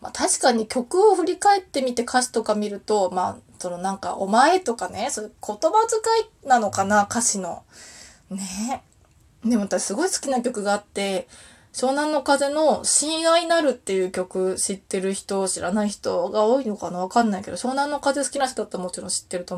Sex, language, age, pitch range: female, Japanese, 20-39, 200-270 Hz